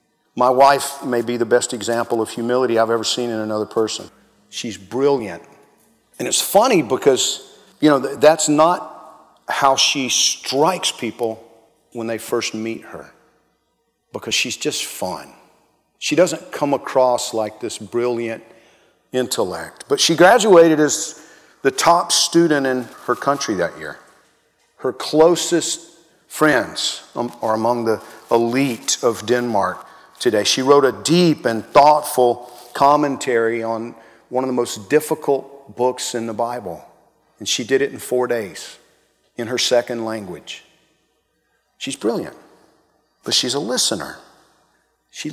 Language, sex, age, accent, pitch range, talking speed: English, male, 50-69, American, 115-140 Hz, 135 wpm